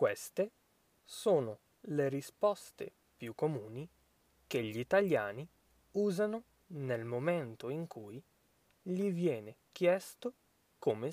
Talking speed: 95 wpm